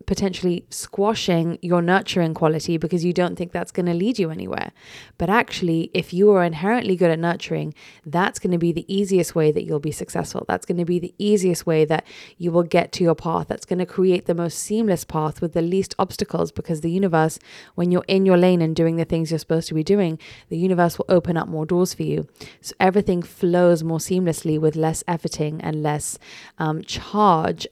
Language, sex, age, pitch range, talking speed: English, female, 20-39, 160-185 Hz, 215 wpm